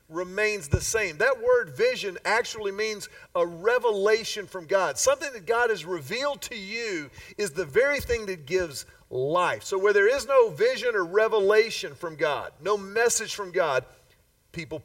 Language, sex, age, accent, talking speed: English, male, 40-59, American, 165 wpm